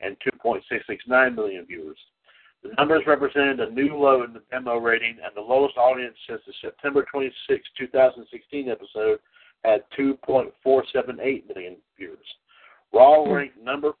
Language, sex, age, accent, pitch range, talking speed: English, male, 50-69, American, 115-145 Hz, 130 wpm